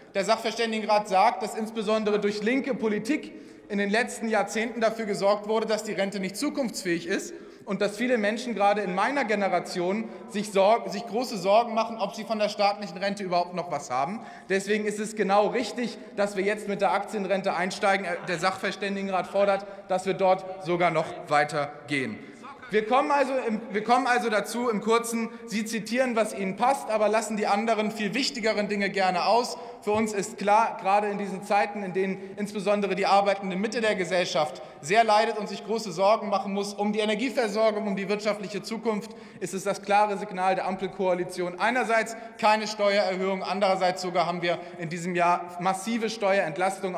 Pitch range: 190-220 Hz